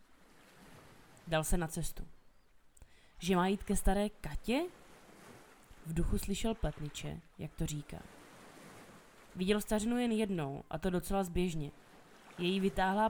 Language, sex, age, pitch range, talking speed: Czech, female, 20-39, 160-220 Hz, 125 wpm